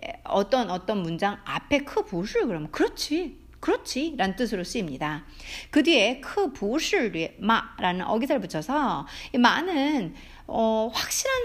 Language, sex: Korean, female